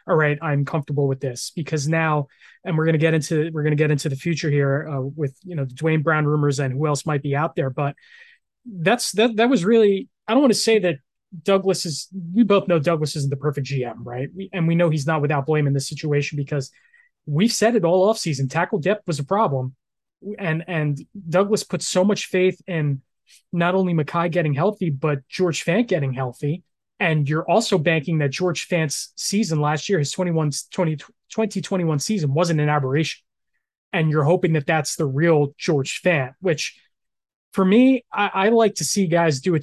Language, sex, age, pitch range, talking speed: English, male, 20-39, 150-185 Hz, 210 wpm